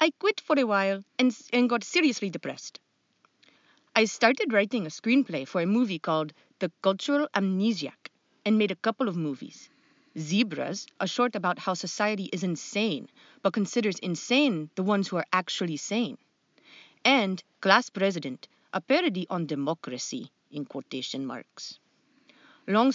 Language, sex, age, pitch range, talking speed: English, female, 30-49, 180-245 Hz, 145 wpm